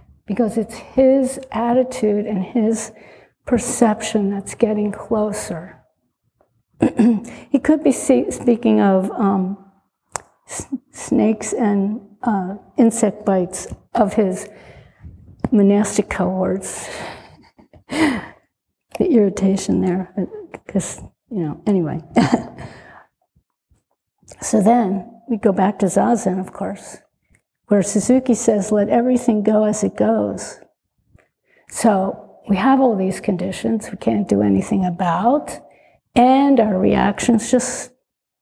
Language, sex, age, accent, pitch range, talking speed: English, female, 50-69, American, 195-240 Hz, 100 wpm